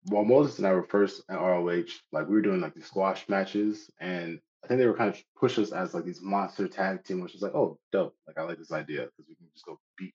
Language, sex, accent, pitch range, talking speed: English, male, American, 85-105 Hz, 280 wpm